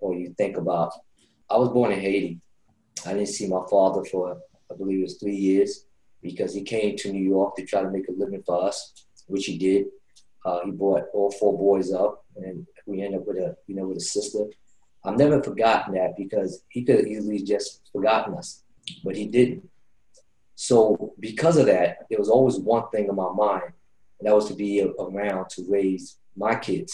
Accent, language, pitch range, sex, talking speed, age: American, English, 95-110 Hz, male, 205 wpm, 20-39